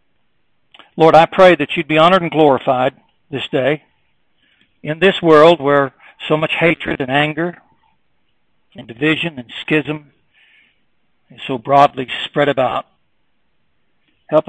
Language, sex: English, male